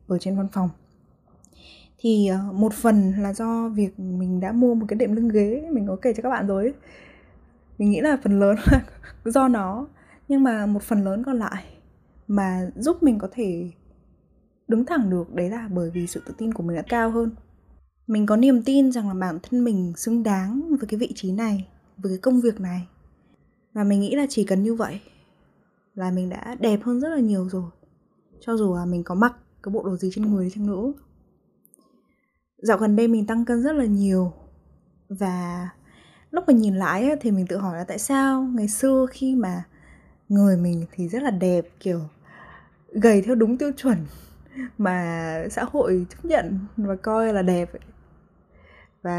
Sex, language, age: female, Vietnamese, 10-29